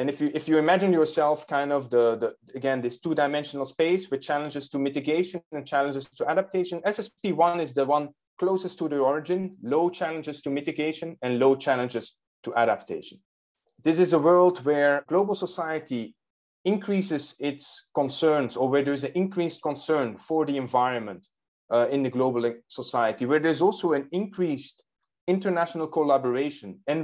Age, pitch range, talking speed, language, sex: 30-49, 135-170 Hz, 160 wpm, English, male